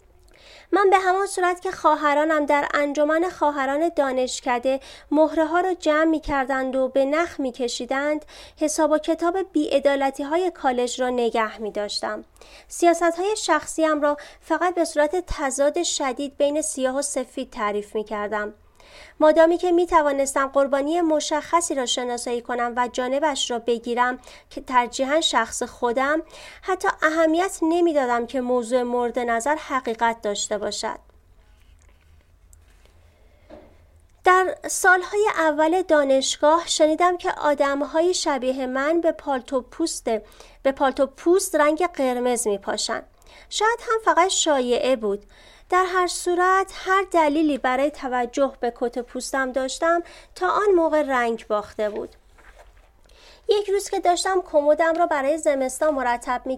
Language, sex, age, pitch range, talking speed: Persian, female, 30-49, 245-330 Hz, 130 wpm